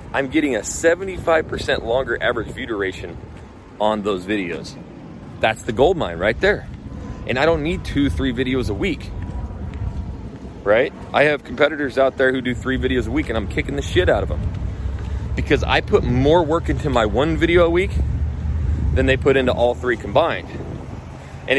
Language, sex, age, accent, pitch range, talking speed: English, male, 30-49, American, 90-135 Hz, 180 wpm